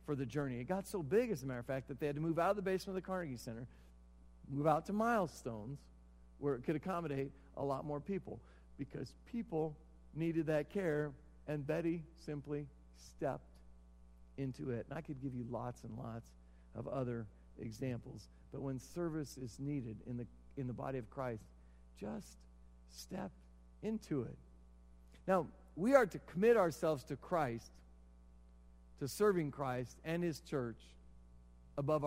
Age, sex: 50-69, male